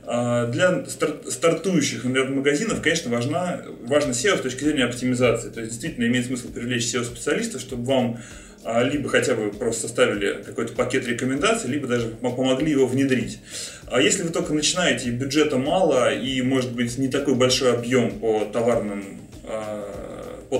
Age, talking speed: 30-49, 140 wpm